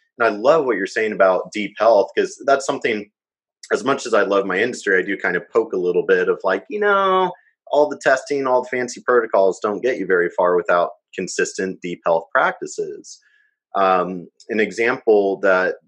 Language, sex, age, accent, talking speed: English, male, 30-49, American, 195 wpm